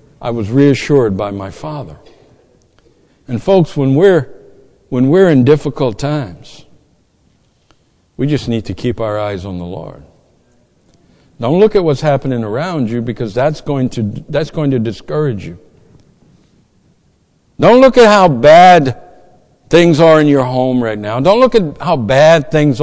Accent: American